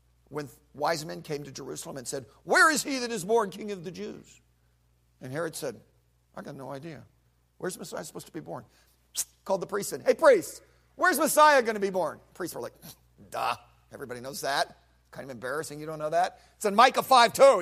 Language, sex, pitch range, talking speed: English, male, 155-210 Hz, 210 wpm